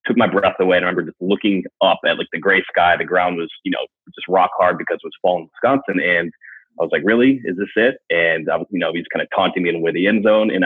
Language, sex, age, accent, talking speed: English, male, 30-49, American, 300 wpm